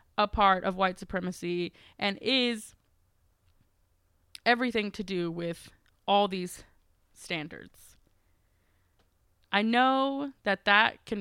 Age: 20-39